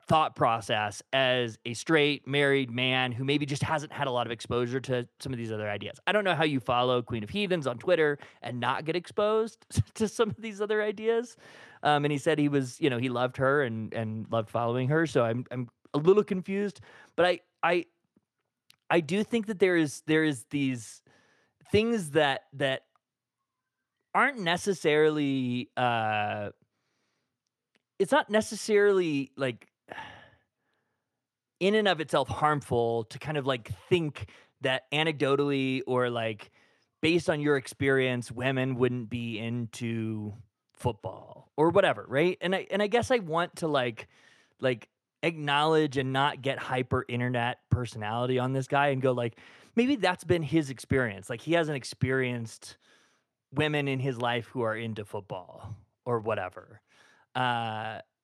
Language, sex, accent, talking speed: English, male, American, 160 wpm